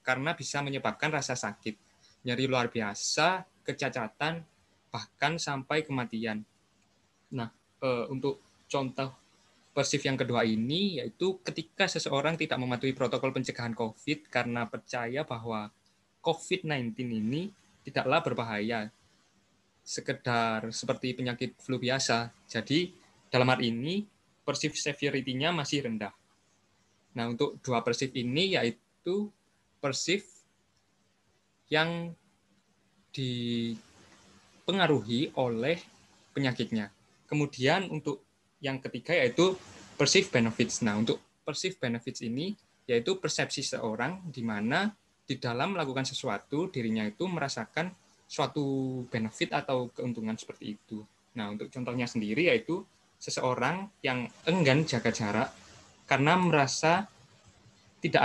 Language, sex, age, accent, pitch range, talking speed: Indonesian, male, 20-39, native, 115-155 Hz, 105 wpm